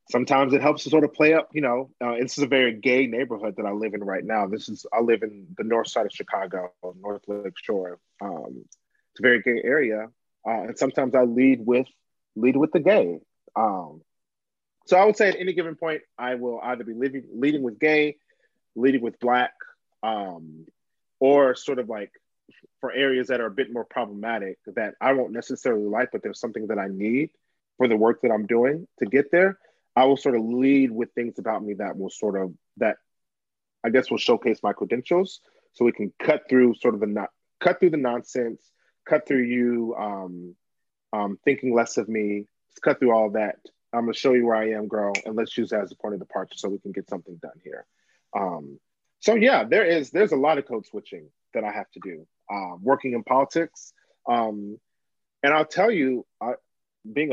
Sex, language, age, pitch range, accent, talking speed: male, English, 30-49, 110-135 Hz, American, 210 wpm